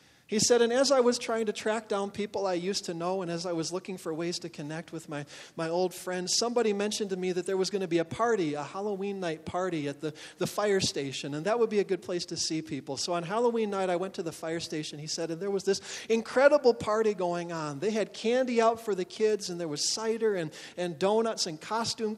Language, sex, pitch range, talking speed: English, male, 165-215 Hz, 260 wpm